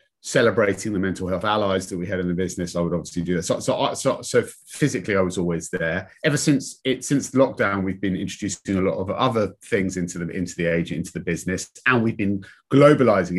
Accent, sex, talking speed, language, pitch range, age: British, male, 225 wpm, English, 90-120 Hz, 30-49